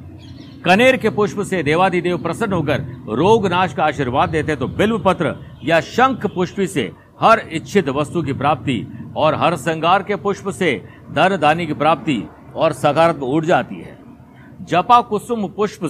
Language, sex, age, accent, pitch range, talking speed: Hindi, male, 50-69, native, 140-185 Hz, 155 wpm